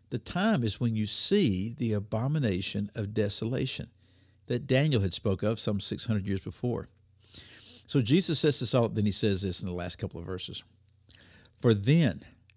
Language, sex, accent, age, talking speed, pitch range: English, male, American, 60-79, 170 wpm, 100-125 Hz